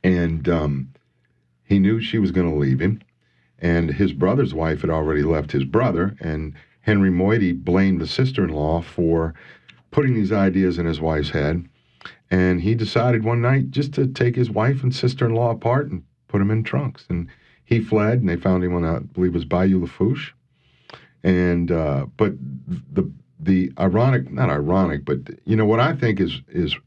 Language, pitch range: English, 75-105 Hz